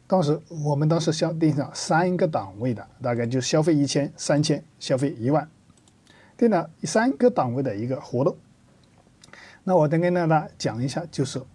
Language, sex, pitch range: Chinese, male, 125-155 Hz